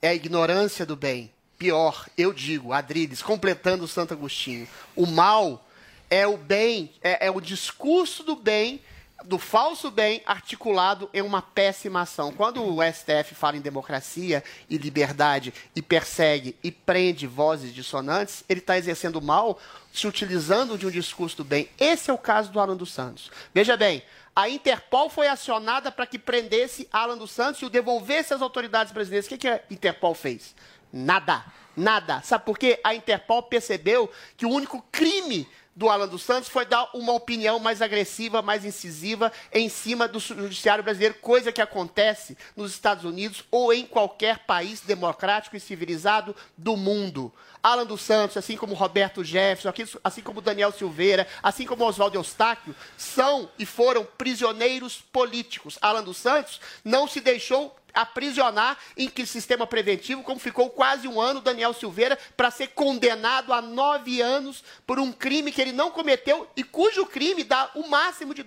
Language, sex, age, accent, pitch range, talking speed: Portuguese, male, 30-49, Brazilian, 185-250 Hz, 170 wpm